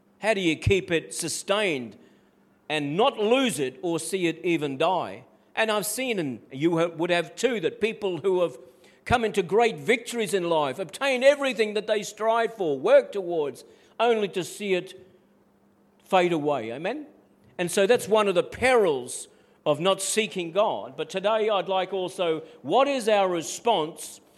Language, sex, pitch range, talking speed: English, male, 170-215 Hz, 165 wpm